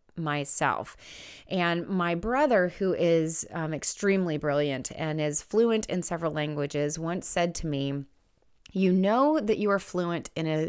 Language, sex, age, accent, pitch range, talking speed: English, female, 30-49, American, 155-205 Hz, 150 wpm